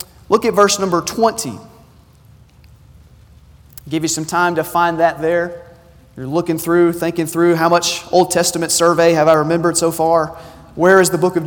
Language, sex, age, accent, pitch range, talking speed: English, male, 30-49, American, 180-255 Hz, 175 wpm